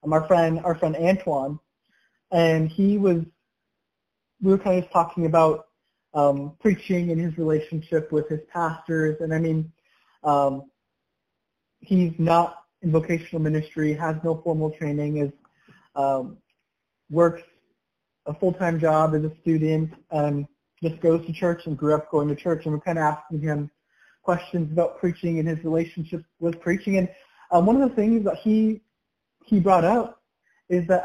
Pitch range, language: 150-180 Hz, English